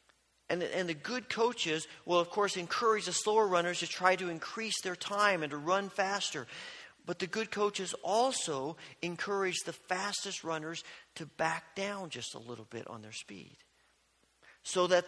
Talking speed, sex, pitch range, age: 170 wpm, male, 125-190 Hz, 40-59